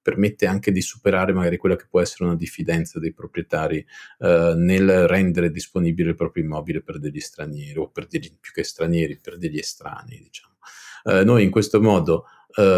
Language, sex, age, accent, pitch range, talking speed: Italian, male, 40-59, native, 85-105 Hz, 185 wpm